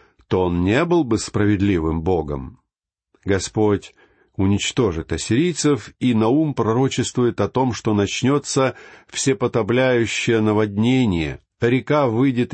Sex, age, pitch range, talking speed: male, 50-69, 105-140 Hz, 100 wpm